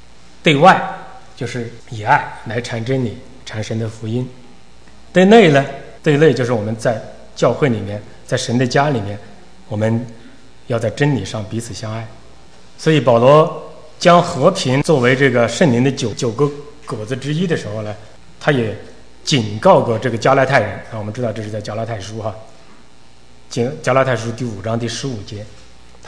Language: English